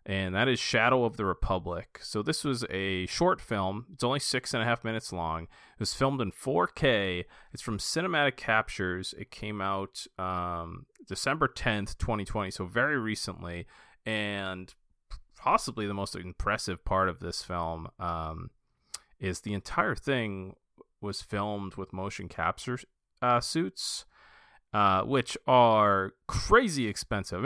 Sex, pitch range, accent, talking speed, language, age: male, 90-110 Hz, American, 145 wpm, English, 30-49